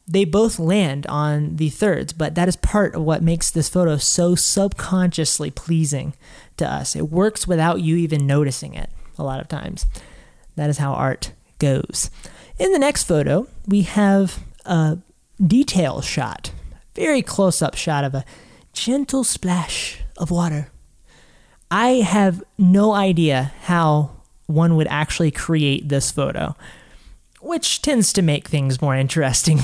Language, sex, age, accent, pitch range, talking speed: English, male, 30-49, American, 150-200 Hz, 150 wpm